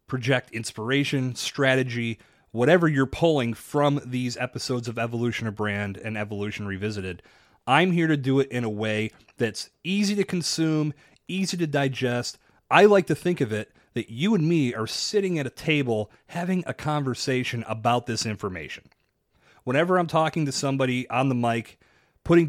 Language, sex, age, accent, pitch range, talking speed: English, male, 30-49, American, 115-150 Hz, 165 wpm